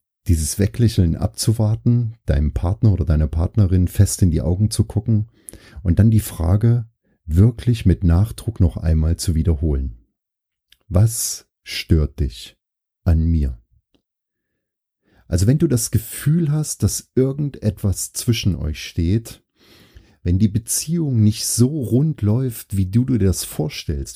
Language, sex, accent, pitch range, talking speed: German, male, German, 85-115 Hz, 130 wpm